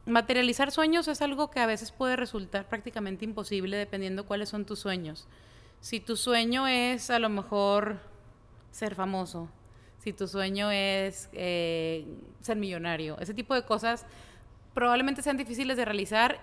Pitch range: 190-235 Hz